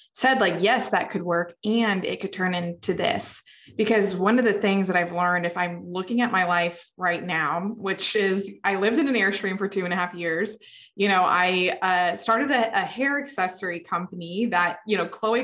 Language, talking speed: English, 215 wpm